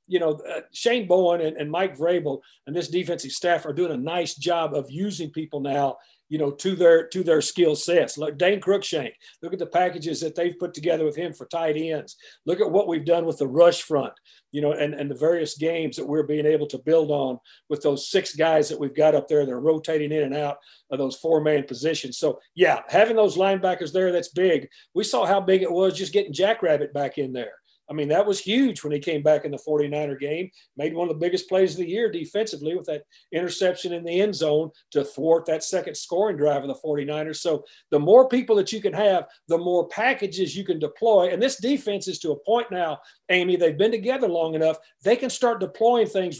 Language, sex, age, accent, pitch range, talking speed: English, male, 50-69, American, 150-190 Hz, 230 wpm